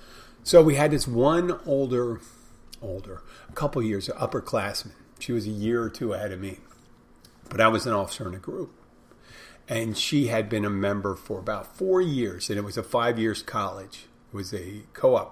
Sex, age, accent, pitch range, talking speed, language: male, 50-69, American, 100-125 Hz, 190 wpm, English